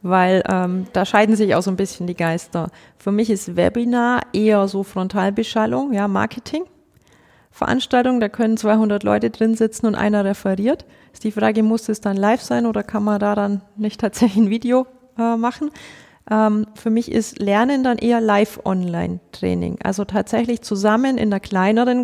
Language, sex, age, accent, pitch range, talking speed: German, female, 30-49, German, 200-235 Hz, 170 wpm